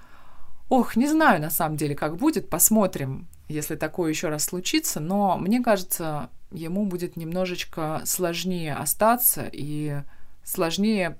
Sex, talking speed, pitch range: female, 130 wpm, 155-200 Hz